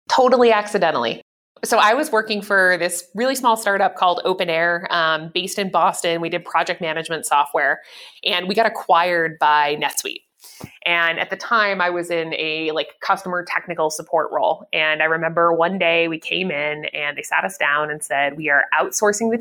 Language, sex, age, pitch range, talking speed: English, female, 20-39, 160-210 Hz, 190 wpm